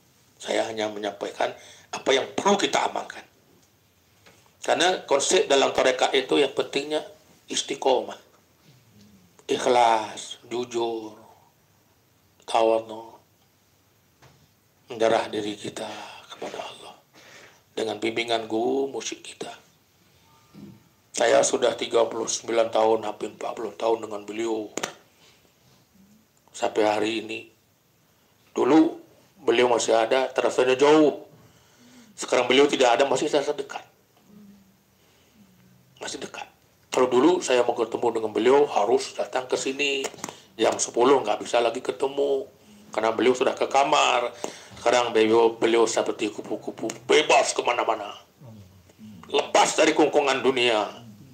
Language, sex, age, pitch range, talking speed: Indonesian, male, 50-69, 110-145 Hz, 105 wpm